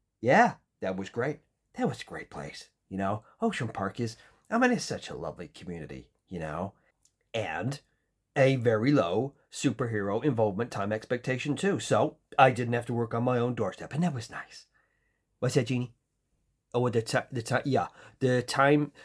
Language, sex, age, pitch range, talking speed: English, male, 40-59, 110-140 Hz, 180 wpm